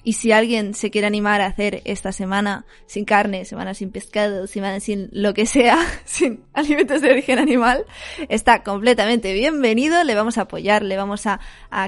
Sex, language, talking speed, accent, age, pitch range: female, Spanish, 180 wpm, Spanish, 20-39, 200-235 Hz